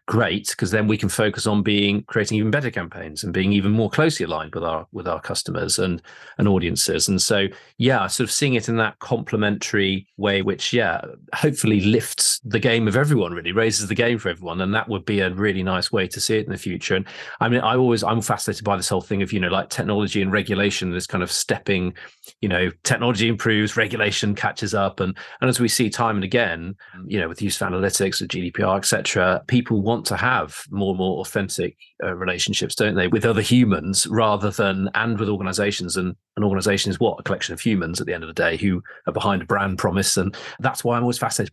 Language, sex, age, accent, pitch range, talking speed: English, male, 30-49, British, 95-115 Hz, 230 wpm